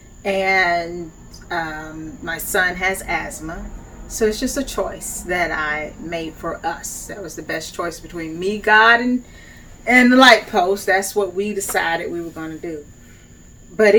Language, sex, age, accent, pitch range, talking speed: English, female, 30-49, American, 165-200 Hz, 165 wpm